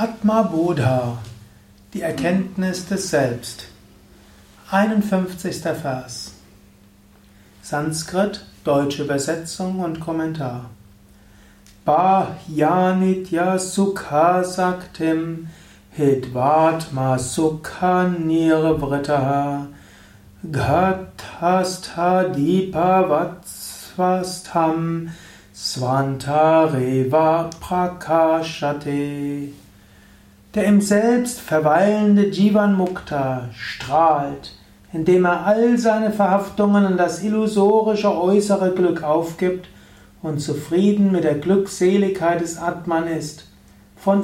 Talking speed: 65 wpm